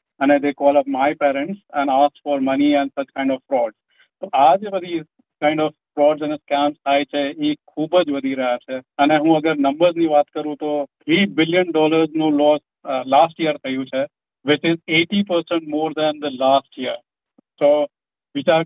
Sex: male